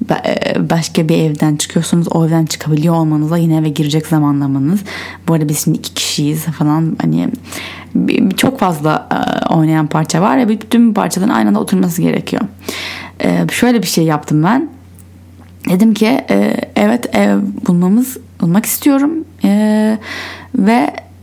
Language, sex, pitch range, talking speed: Turkish, female, 155-225 Hz, 125 wpm